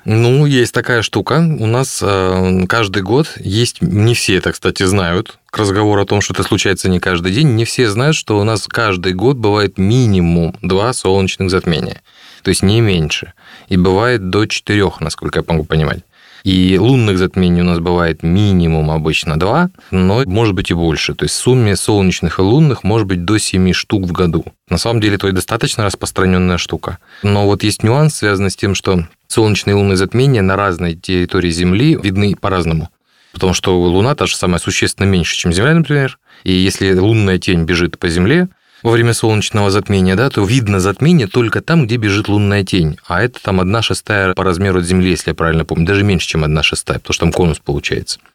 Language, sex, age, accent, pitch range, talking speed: Russian, male, 20-39, native, 90-110 Hz, 195 wpm